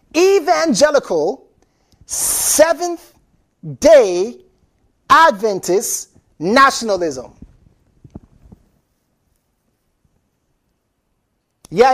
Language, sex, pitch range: English, male, 230-330 Hz